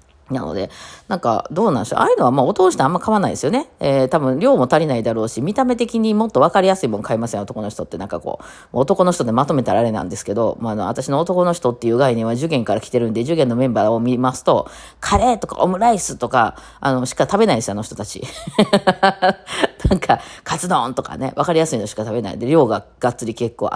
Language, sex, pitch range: Japanese, female, 120-180 Hz